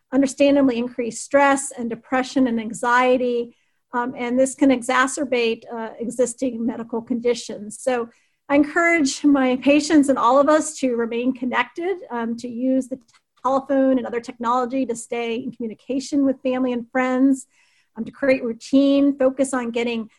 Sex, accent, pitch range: female, American, 235-270 Hz